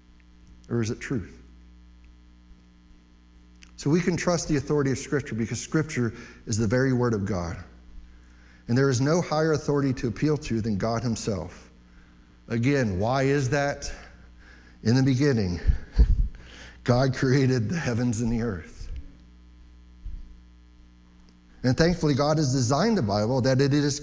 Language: English